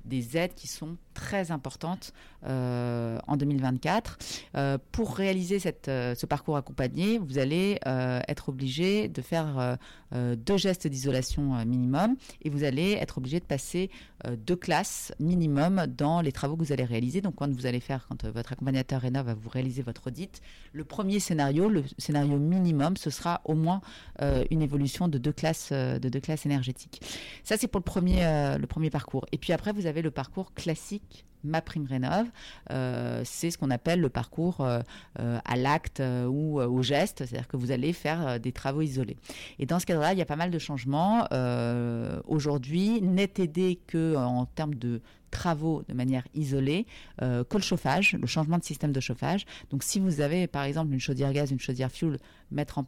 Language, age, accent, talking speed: French, 30-49, French, 190 wpm